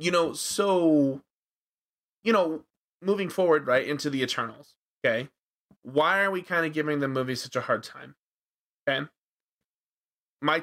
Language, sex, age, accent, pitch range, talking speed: English, male, 20-39, American, 115-150 Hz, 145 wpm